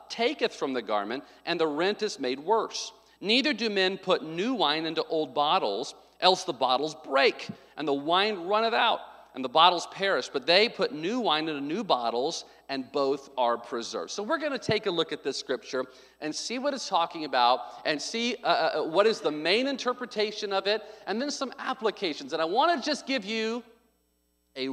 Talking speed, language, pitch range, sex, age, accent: 200 wpm, English, 140-215 Hz, male, 40-59, American